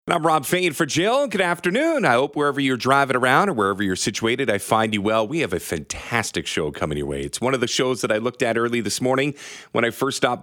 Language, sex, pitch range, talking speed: English, male, 115-155 Hz, 260 wpm